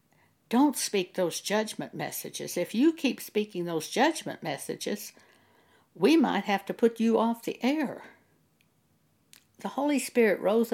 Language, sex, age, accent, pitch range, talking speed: English, female, 60-79, American, 170-235 Hz, 140 wpm